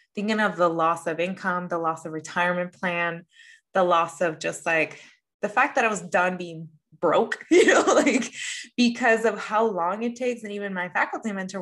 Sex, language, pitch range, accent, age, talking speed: female, English, 165-205 Hz, American, 20-39, 195 wpm